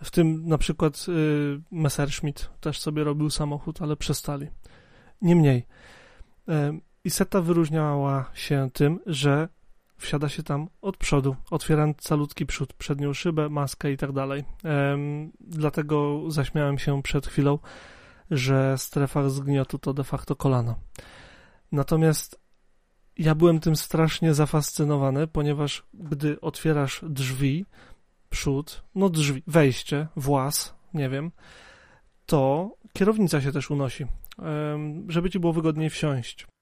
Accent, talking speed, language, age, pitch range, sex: native, 120 wpm, Polish, 30-49, 145-165 Hz, male